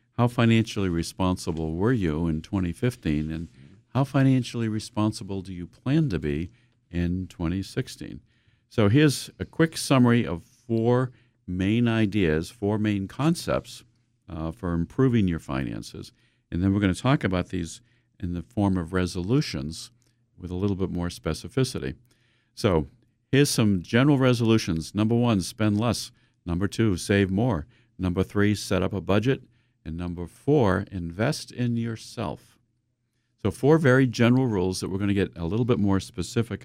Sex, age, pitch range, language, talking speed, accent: male, 50-69, 90-120 Hz, English, 150 wpm, American